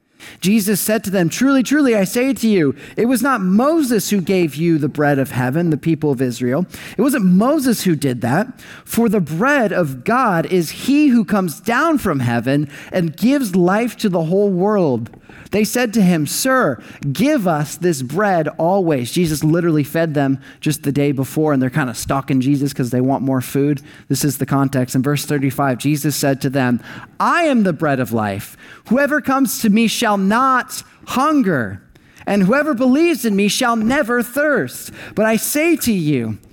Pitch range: 140-220 Hz